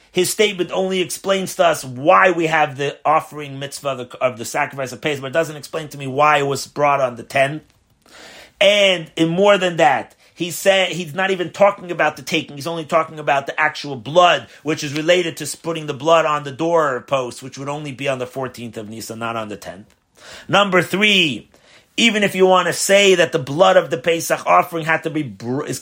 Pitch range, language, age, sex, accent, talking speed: 135-175 Hz, English, 30-49, male, American, 225 wpm